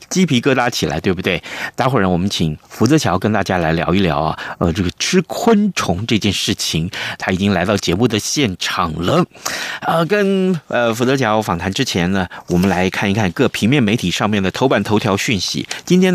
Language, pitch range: Chinese, 95-145 Hz